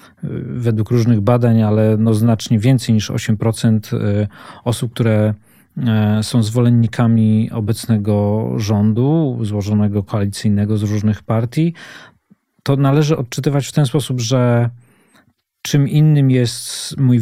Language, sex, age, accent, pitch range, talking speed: Polish, male, 40-59, native, 110-130 Hz, 105 wpm